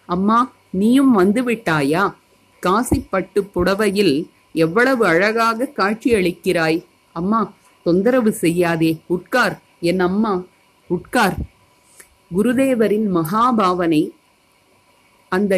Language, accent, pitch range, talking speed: Tamil, native, 175-230 Hz, 75 wpm